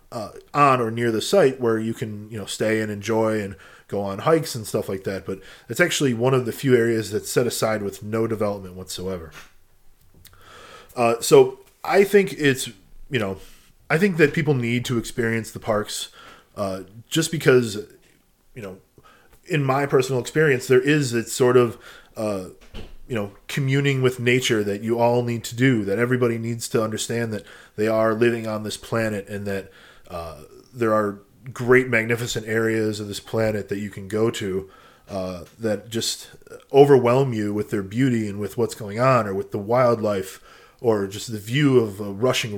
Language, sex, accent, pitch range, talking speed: English, male, American, 105-130 Hz, 185 wpm